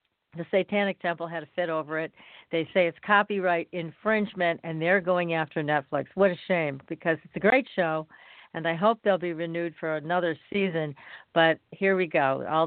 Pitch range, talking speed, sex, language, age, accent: 165-210 Hz, 190 wpm, female, English, 50-69, American